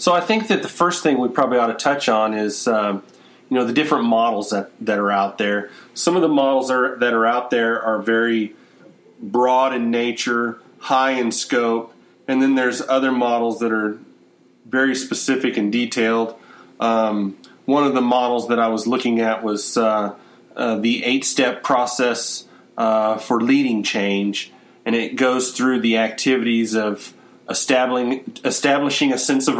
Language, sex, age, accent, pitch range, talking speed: English, male, 30-49, American, 110-130 Hz, 170 wpm